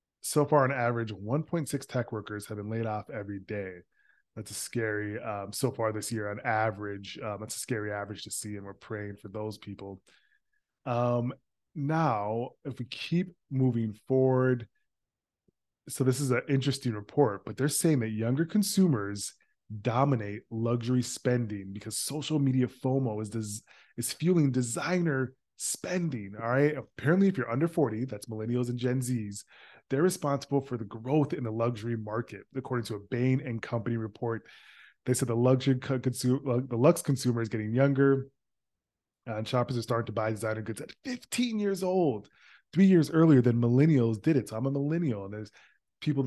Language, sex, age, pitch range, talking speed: English, male, 20-39, 110-140 Hz, 170 wpm